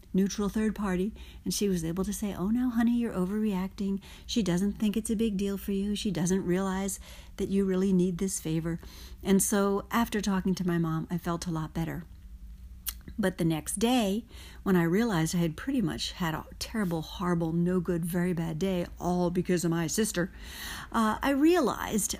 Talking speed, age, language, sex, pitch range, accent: 195 wpm, 50-69, English, female, 180-230 Hz, American